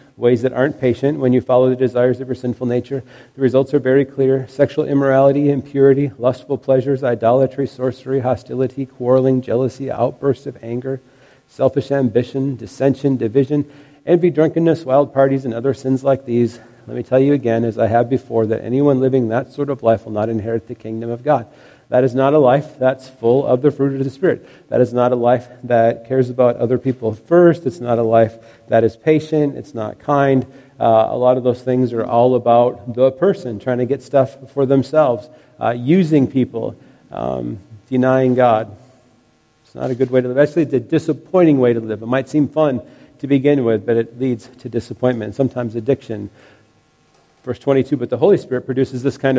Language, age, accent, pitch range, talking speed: English, 40-59, American, 120-140 Hz, 195 wpm